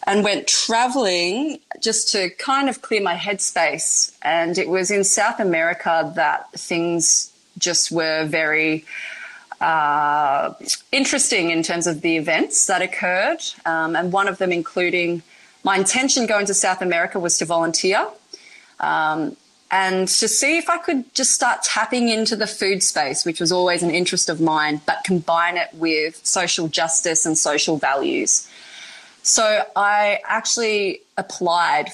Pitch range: 165-215 Hz